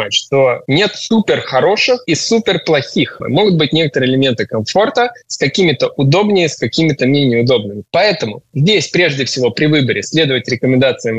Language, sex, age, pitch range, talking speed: Russian, male, 20-39, 125-180 Hz, 145 wpm